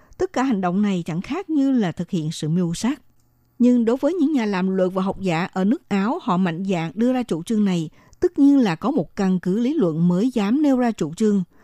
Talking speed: 260 wpm